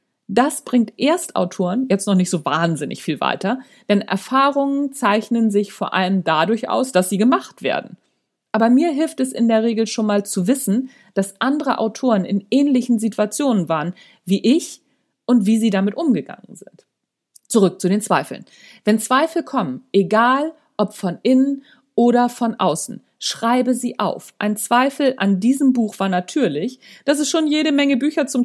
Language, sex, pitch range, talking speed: German, female, 195-260 Hz, 165 wpm